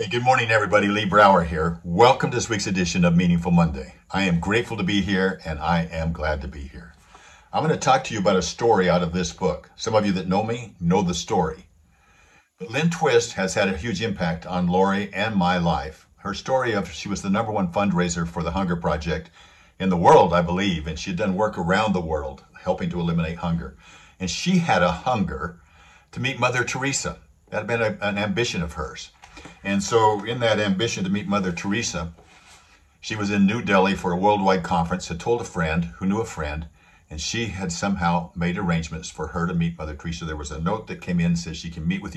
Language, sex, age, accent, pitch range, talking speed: English, male, 60-79, American, 85-100 Hz, 230 wpm